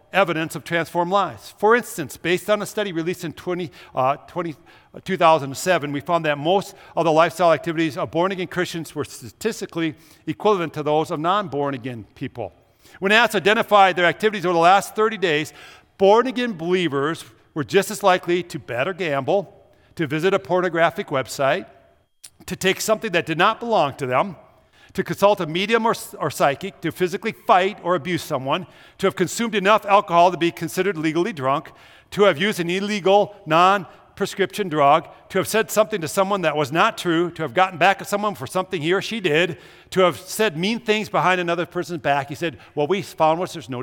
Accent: American